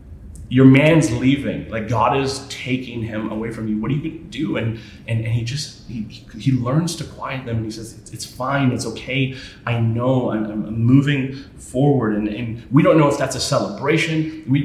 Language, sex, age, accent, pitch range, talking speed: English, male, 30-49, American, 105-125 Hz, 205 wpm